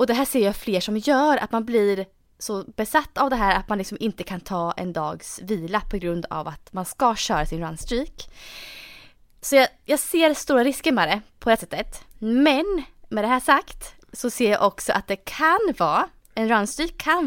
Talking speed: 210 wpm